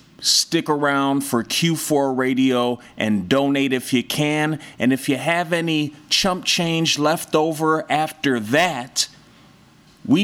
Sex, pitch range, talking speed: male, 125-165 Hz, 130 wpm